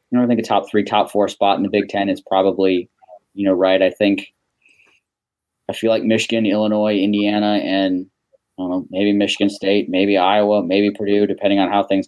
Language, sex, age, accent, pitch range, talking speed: English, male, 20-39, American, 95-105 Hz, 200 wpm